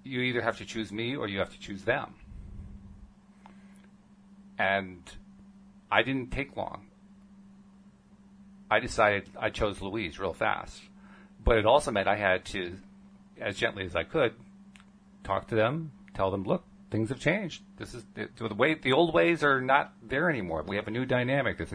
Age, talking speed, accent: 40-59, 175 wpm, American